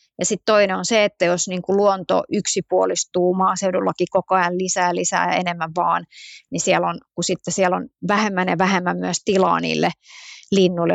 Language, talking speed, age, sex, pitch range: Finnish, 175 wpm, 30-49, female, 175-195 Hz